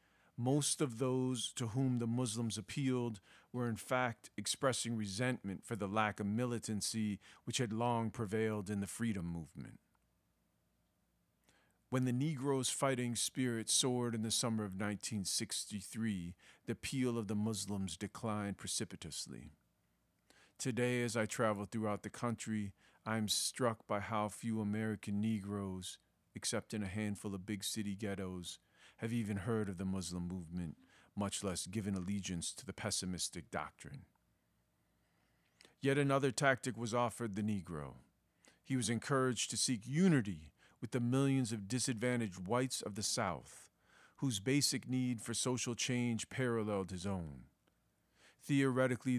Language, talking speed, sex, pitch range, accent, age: English, 140 wpm, male, 100-125 Hz, American, 40-59